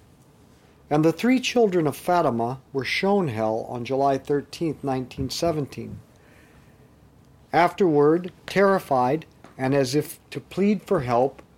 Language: English